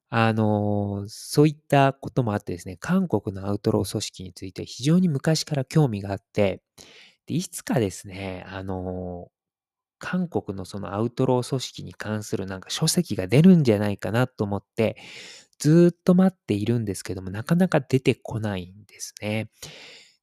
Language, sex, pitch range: Japanese, male, 100-135 Hz